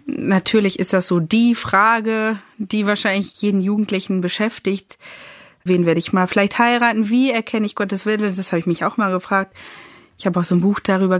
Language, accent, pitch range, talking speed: German, German, 185-220 Hz, 195 wpm